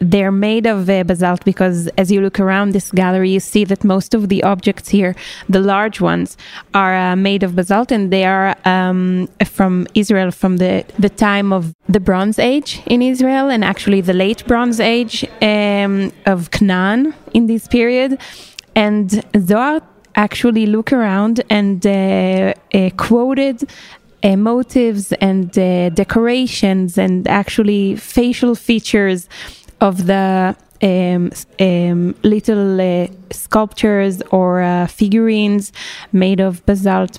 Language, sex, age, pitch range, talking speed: English, female, 20-39, 190-215 Hz, 140 wpm